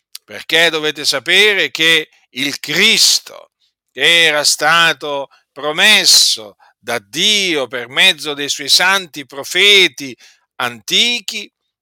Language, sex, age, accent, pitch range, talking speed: Italian, male, 50-69, native, 145-190 Hz, 95 wpm